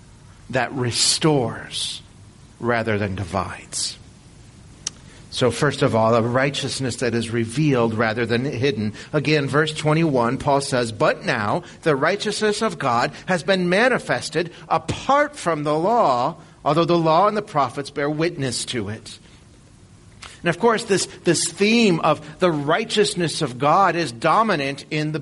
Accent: American